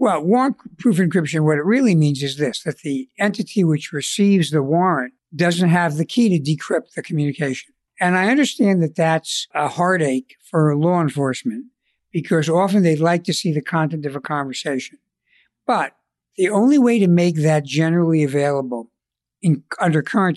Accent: American